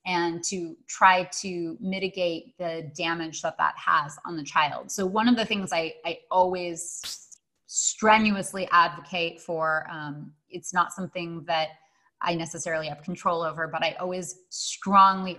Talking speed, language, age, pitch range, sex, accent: 150 wpm, English, 30-49, 165-185 Hz, female, American